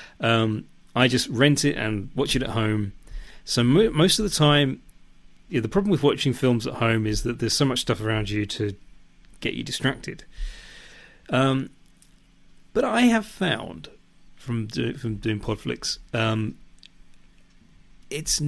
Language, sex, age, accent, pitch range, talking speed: English, male, 30-49, British, 105-135 Hz, 145 wpm